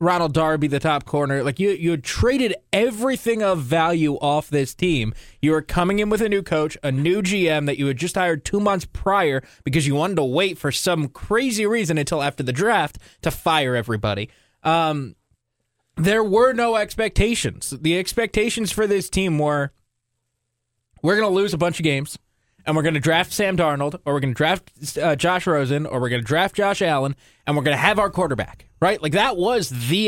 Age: 20-39